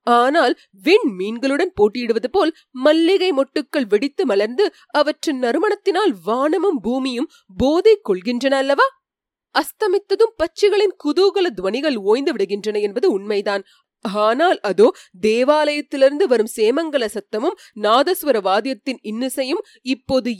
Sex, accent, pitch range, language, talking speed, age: female, native, 235-370 Hz, Tamil, 100 wpm, 30-49